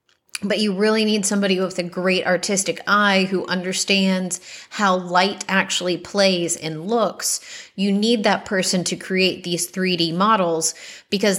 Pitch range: 180-215 Hz